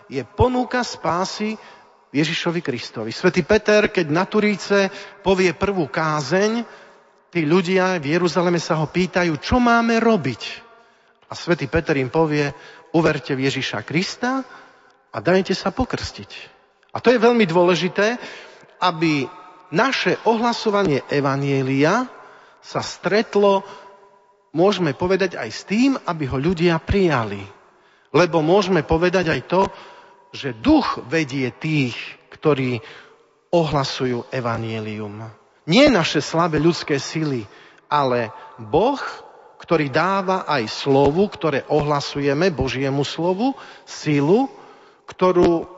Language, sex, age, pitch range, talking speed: Slovak, male, 40-59, 150-200 Hz, 110 wpm